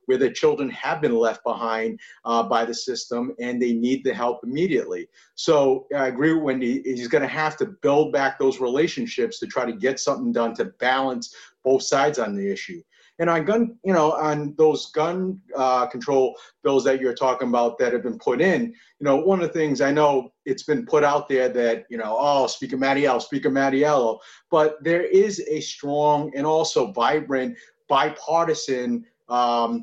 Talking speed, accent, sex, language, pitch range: 190 wpm, American, male, English, 125-155 Hz